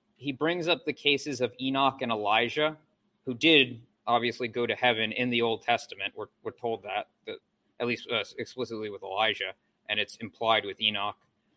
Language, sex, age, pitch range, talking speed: English, male, 20-39, 115-130 Hz, 180 wpm